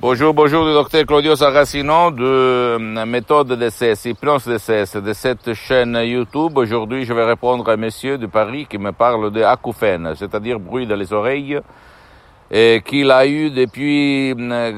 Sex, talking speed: male, 155 wpm